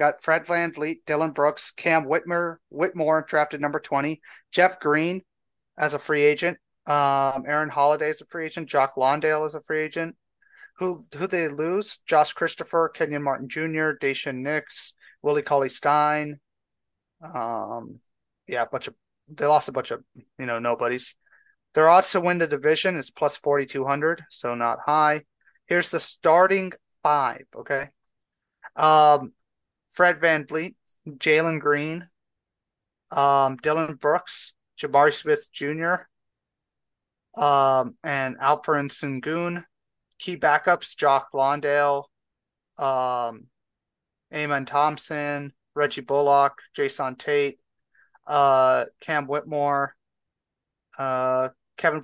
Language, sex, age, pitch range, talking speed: English, male, 30-49, 140-160 Hz, 120 wpm